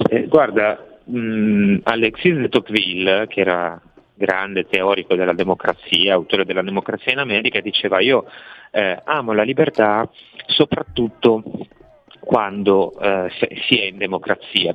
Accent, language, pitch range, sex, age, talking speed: native, Italian, 100-155 Hz, male, 30-49, 120 wpm